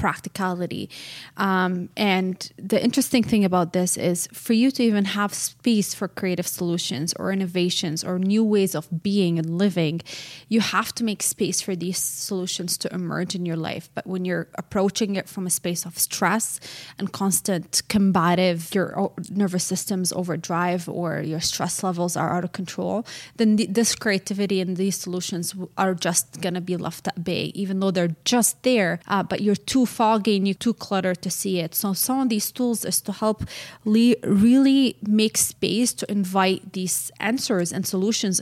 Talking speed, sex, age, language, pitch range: 180 wpm, female, 20-39, English, 180-205 Hz